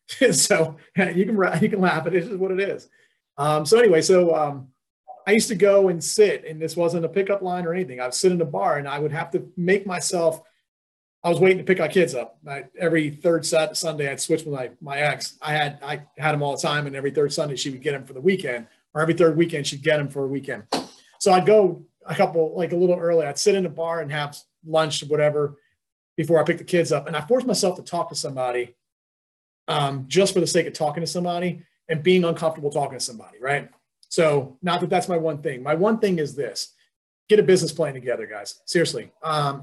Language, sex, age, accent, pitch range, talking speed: English, male, 30-49, American, 150-180 Hz, 250 wpm